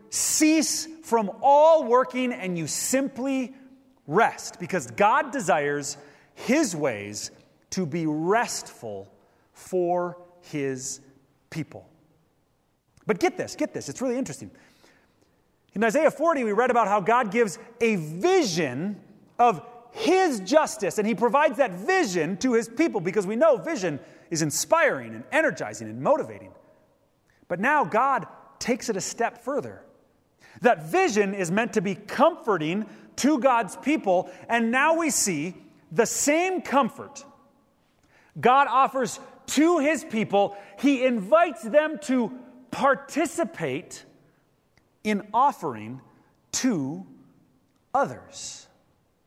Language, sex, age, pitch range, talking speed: English, male, 30-49, 180-270 Hz, 120 wpm